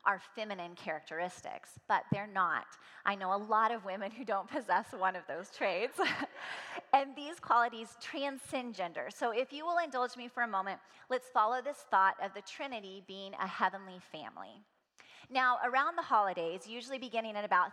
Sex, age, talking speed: female, 30-49, 175 wpm